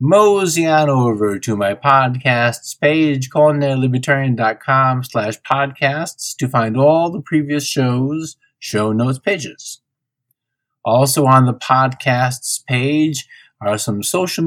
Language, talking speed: English, 110 wpm